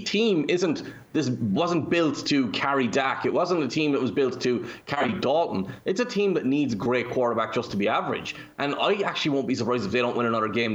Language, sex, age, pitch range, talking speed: English, male, 20-39, 115-135 Hz, 230 wpm